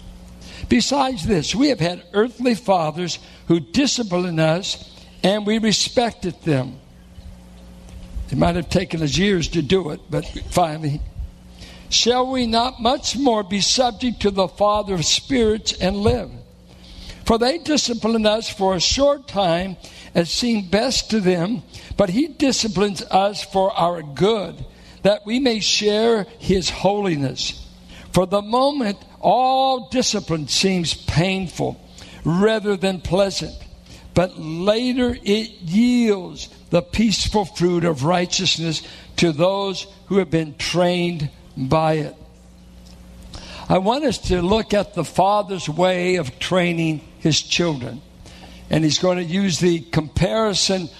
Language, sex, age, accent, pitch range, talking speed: English, male, 60-79, American, 160-210 Hz, 130 wpm